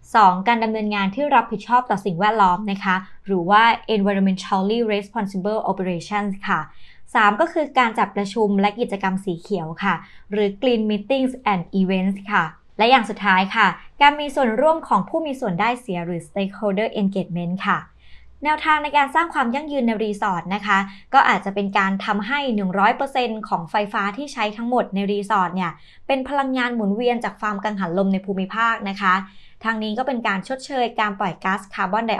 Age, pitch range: 20-39, 195-235 Hz